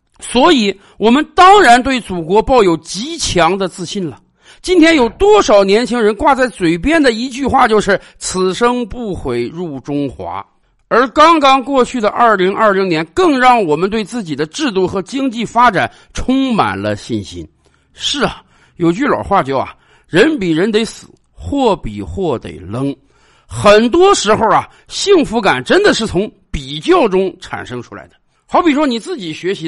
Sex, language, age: male, Chinese, 50-69